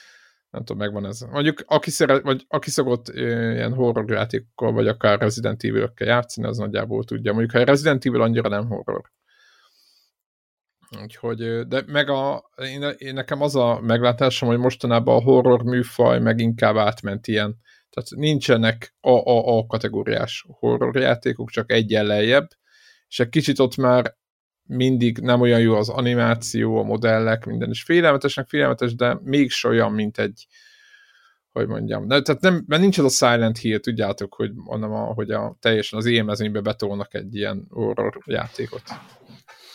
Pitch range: 110-135 Hz